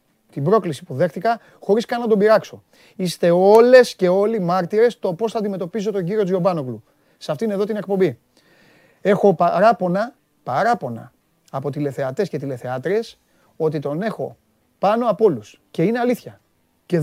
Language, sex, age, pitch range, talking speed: Greek, male, 30-49, 160-220 Hz, 150 wpm